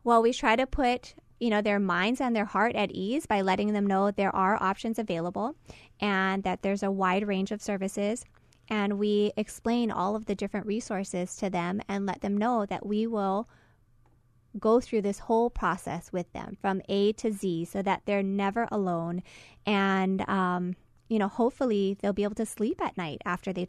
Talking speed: 195 wpm